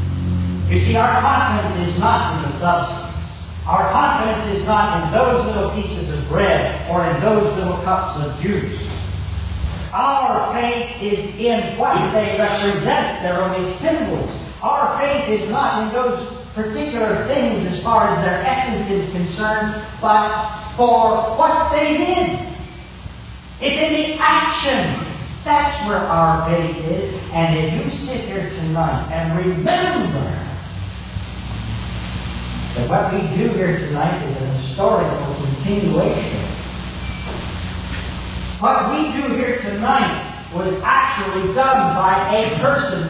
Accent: American